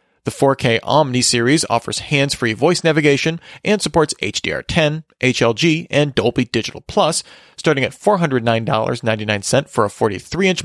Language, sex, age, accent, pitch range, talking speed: English, male, 40-59, American, 115-150 Hz, 125 wpm